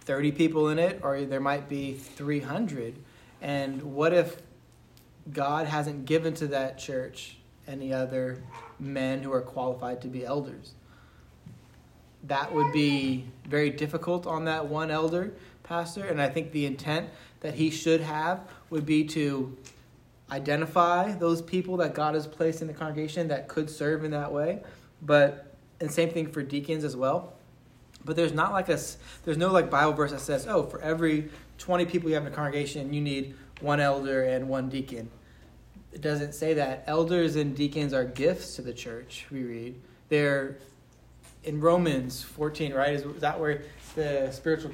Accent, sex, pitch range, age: American, male, 130-155 Hz, 20-39